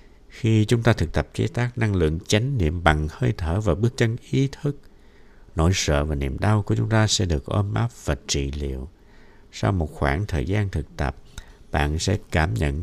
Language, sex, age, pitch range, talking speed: Vietnamese, male, 60-79, 75-110 Hz, 210 wpm